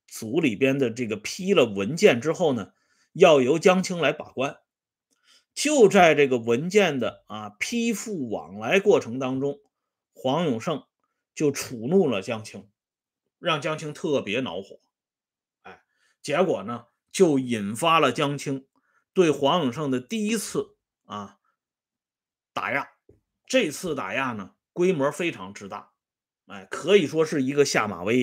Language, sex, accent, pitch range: Swedish, male, Chinese, 120-190 Hz